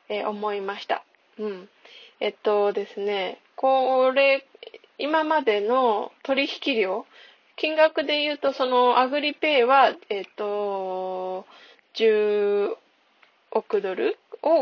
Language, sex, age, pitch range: Japanese, female, 20-39, 210-305 Hz